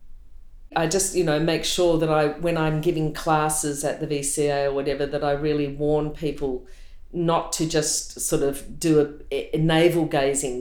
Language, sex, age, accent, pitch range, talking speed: English, female, 40-59, Australian, 150-170 Hz, 180 wpm